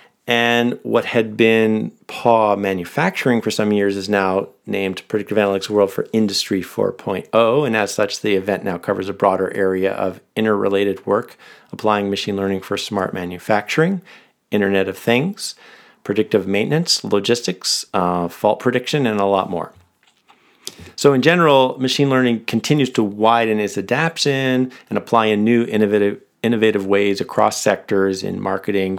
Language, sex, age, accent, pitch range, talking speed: English, male, 50-69, American, 100-120 Hz, 145 wpm